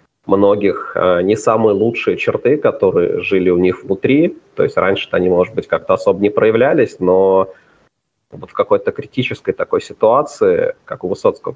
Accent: native